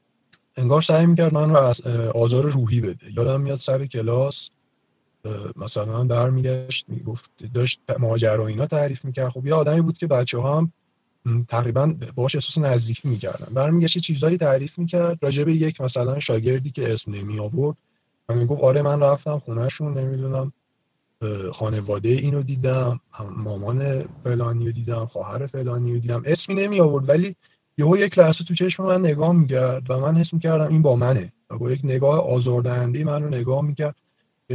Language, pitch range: Persian, 120-150 Hz